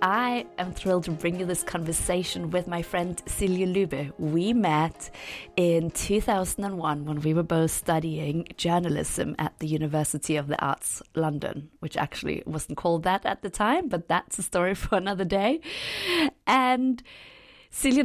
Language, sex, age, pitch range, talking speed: English, female, 30-49, 170-215 Hz, 155 wpm